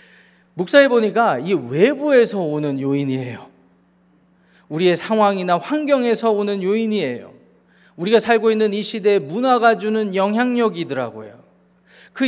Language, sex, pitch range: Korean, male, 165-205 Hz